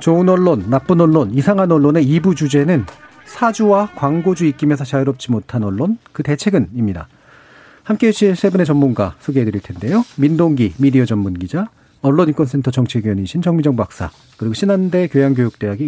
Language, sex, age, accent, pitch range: Korean, male, 40-59, native, 115-170 Hz